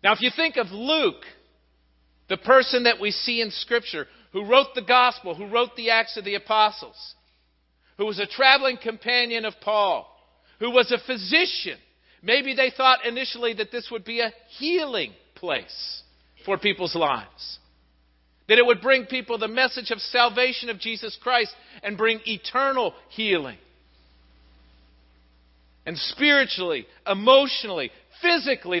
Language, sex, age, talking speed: English, male, 50-69, 145 wpm